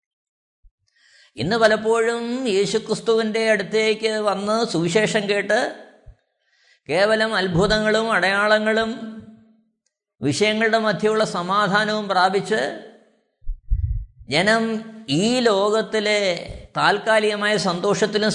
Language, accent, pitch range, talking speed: Malayalam, native, 180-220 Hz, 60 wpm